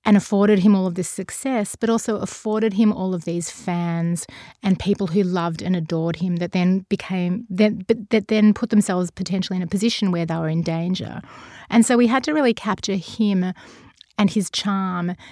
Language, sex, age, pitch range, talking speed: English, female, 30-49, 185-220 Hz, 190 wpm